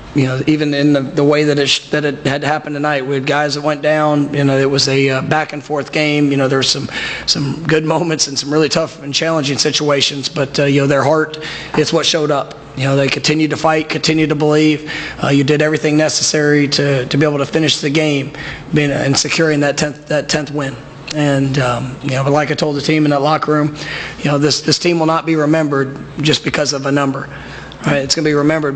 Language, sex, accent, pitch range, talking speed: English, male, American, 140-155 Hz, 245 wpm